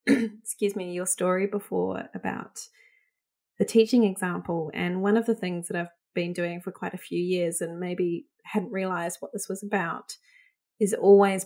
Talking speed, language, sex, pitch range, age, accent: 175 wpm, English, female, 175-220 Hz, 20-39, Australian